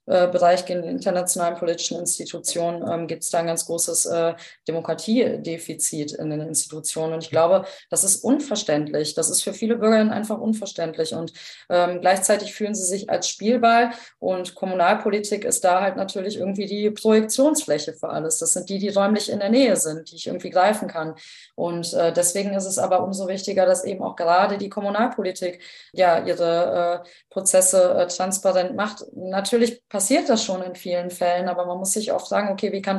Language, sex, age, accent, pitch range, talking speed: German, female, 20-39, German, 175-205 Hz, 180 wpm